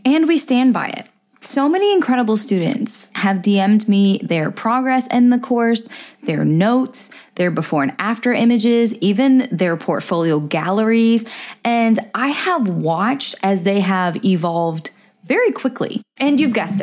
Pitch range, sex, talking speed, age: 185-245 Hz, female, 145 wpm, 10-29